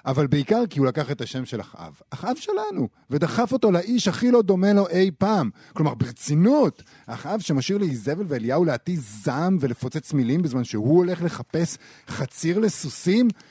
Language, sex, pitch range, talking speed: Hebrew, male, 120-180 Hz, 160 wpm